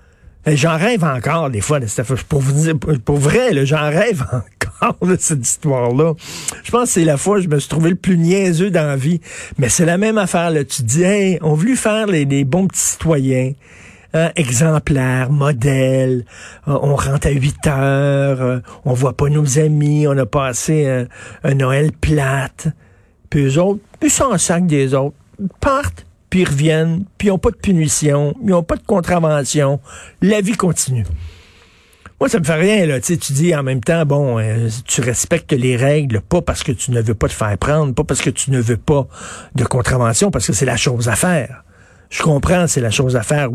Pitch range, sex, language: 125-165 Hz, male, French